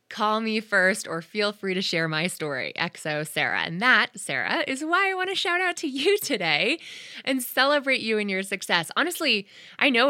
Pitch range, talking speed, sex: 175-250 Hz, 200 wpm, female